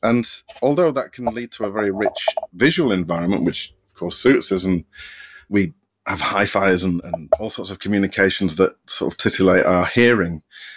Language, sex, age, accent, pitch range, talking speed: English, male, 30-49, British, 95-120 Hz, 180 wpm